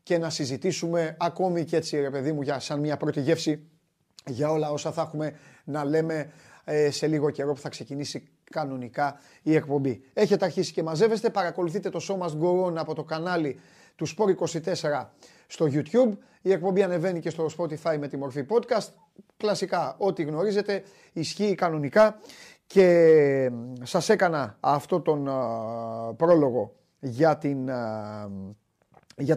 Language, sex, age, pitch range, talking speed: Greek, male, 30-49, 145-185 Hz, 145 wpm